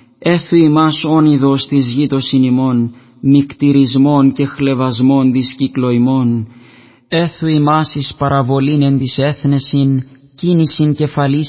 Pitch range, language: 135-155 Hz, Greek